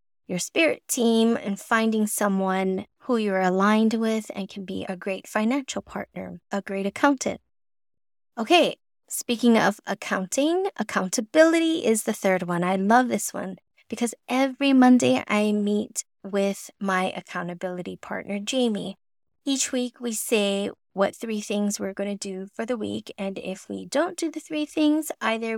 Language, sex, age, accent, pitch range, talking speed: English, female, 20-39, American, 200-270 Hz, 155 wpm